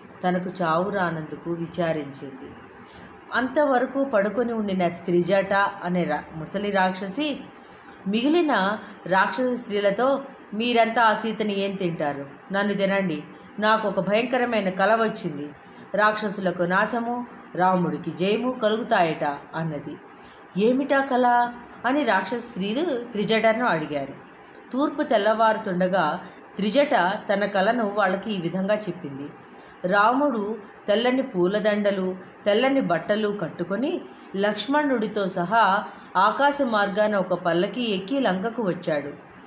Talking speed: 90 wpm